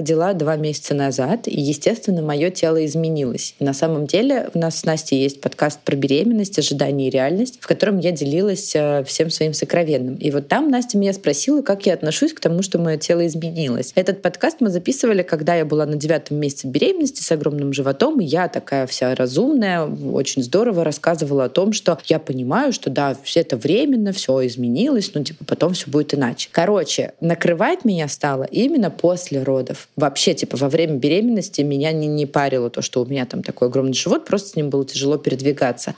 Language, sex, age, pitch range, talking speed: Russian, female, 20-39, 140-180 Hz, 190 wpm